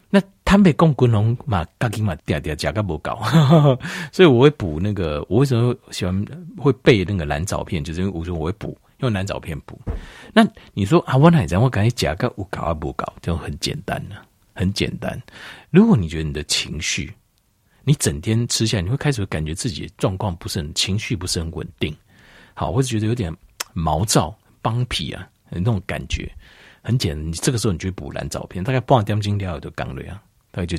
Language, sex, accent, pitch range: Chinese, male, native, 85-135 Hz